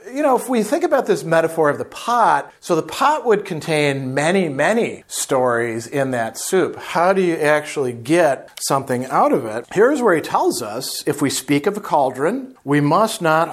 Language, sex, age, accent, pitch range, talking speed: English, male, 40-59, American, 135-180 Hz, 200 wpm